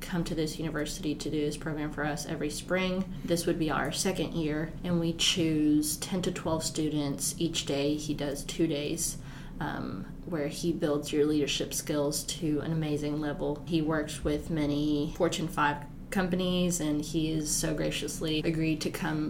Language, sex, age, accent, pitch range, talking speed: English, female, 20-39, American, 150-165 Hz, 175 wpm